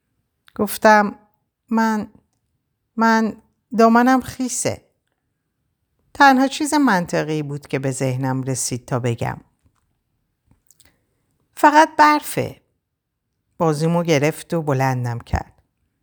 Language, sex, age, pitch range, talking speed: Persian, female, 50-69, 130-190 Hz, 80 wpm